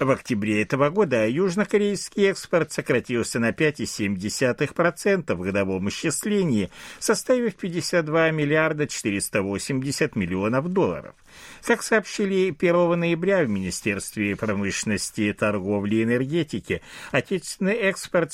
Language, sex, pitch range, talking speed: Russian, male, 110-180 Hz, 100 wpm